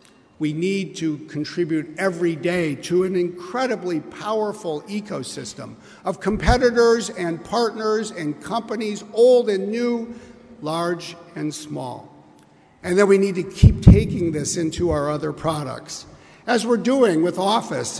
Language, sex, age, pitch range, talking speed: English, male, 60-79, 160-210 Hz, 135 wpm